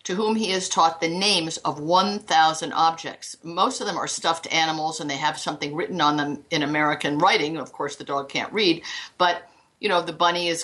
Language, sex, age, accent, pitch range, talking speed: English, female, 50-69, American, 160-215 Hz, 215 wpm